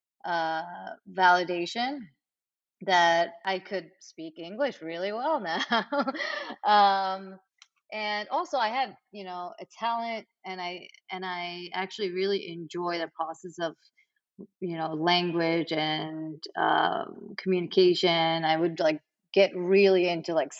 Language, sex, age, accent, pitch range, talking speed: English, female, 30-49, American, 170-200 Hz, 120 wpm